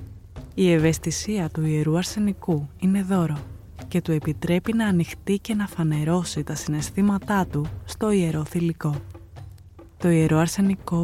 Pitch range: 150-185 Hz